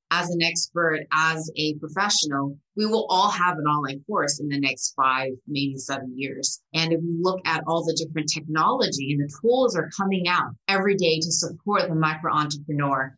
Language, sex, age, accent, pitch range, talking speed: English, female, 30-49, American, 145-170 Hz, 185 wpm